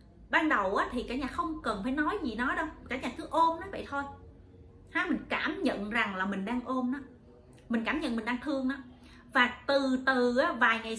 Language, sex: Vietnamese, female